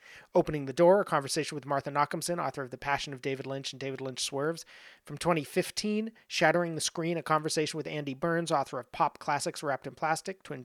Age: 30-49